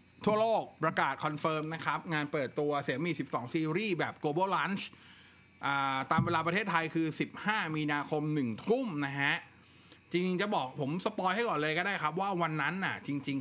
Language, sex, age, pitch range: Thai, male, 20-39, 130-170 Hz